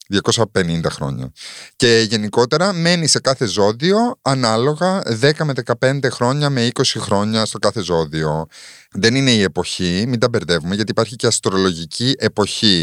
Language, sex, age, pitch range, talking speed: Greek, male, 30-49, 95-125 Hz, 145 wpm